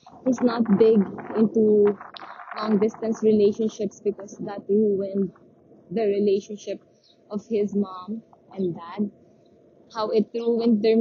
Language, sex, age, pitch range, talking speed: English, female, 20-39, 195-240 Hz, 115 wpm